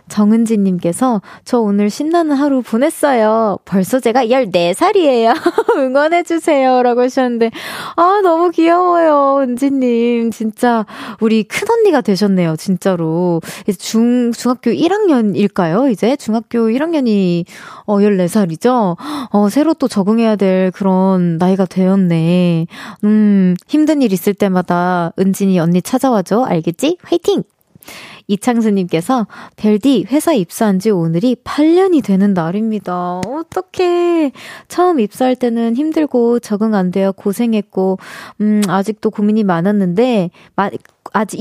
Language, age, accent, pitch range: Korean, 20-39, native, 190-270 Hz